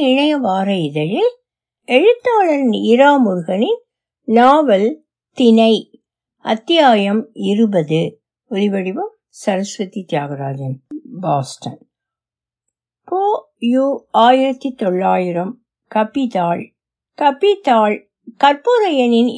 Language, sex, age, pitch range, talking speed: Tamil, female, 60-79, 195-285 Hz, 50 wpm